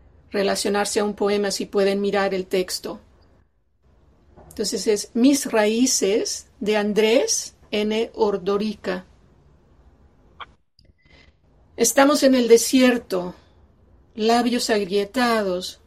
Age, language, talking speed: 40-59, English, 85 wpm